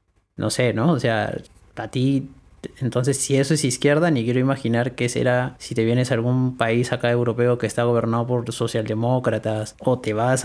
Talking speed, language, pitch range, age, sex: 190 wpm, Spanish, 115-140 Hz, 30-49, male